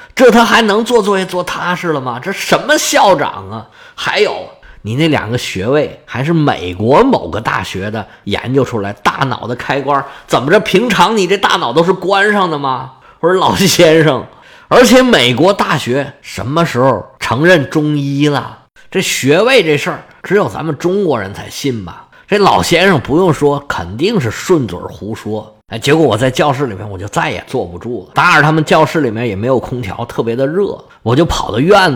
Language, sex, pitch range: Chinese, male, 110-165 Hz